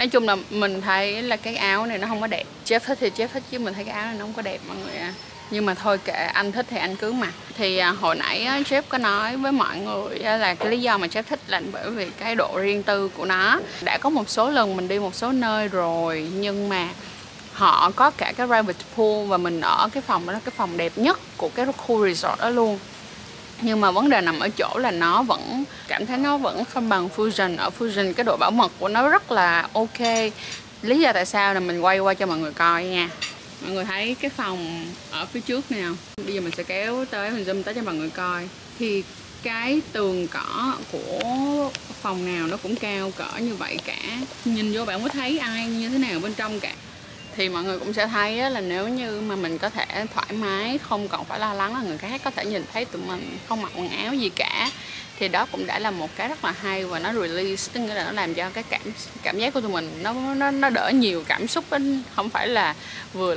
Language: Vietnamese